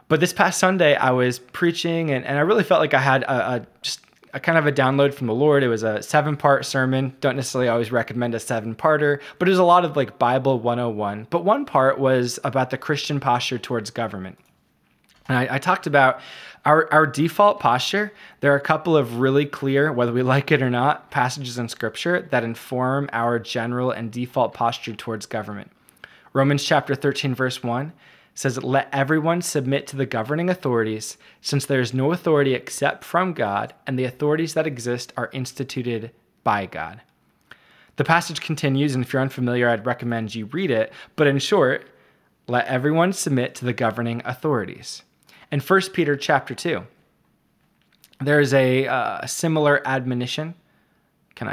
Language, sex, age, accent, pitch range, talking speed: English, male, 20-39, American, 120-150 Hz, 180 wpm